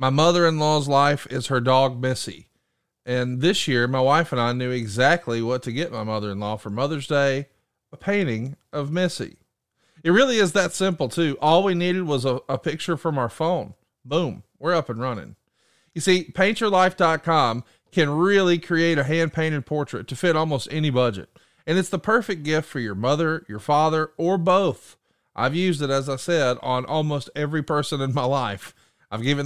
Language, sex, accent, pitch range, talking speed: English, male, American, 125-165 Hz, 185 wpm